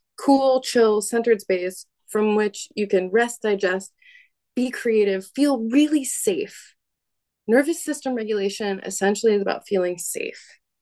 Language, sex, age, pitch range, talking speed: English, female, 20-39, 195-265 Hz, 130 wpm